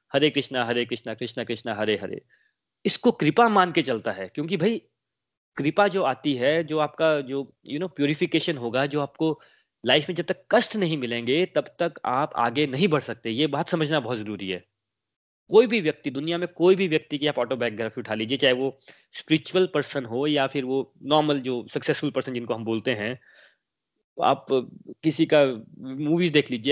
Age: 20-39